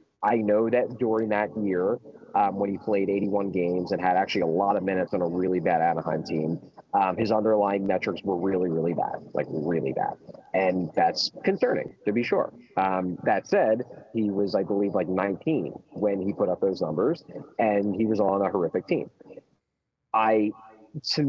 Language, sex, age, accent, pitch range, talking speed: English, male, 30-49, American, 95-110 Hz, 185 wpm